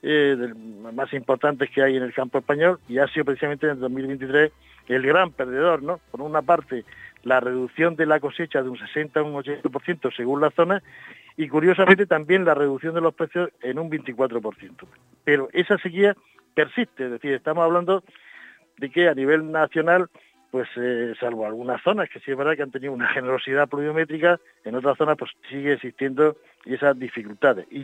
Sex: male